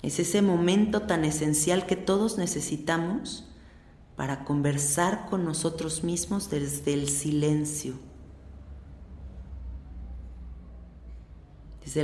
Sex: female